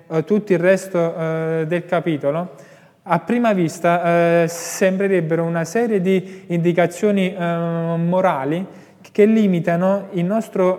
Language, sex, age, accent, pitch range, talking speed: Italian, male, 20-39, native, 170-190 Hz, 115 wpm